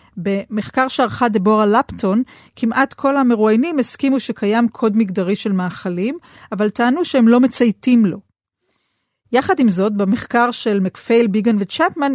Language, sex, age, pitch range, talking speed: Hebrew, female, 40-59, 200-250 Hz, 135 wpm